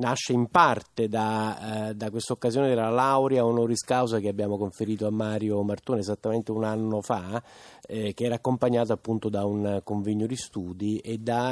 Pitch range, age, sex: 100-120 Hz, 30-49, male